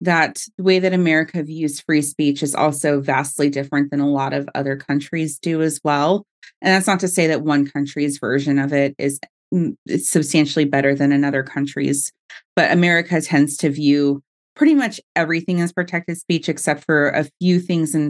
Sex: female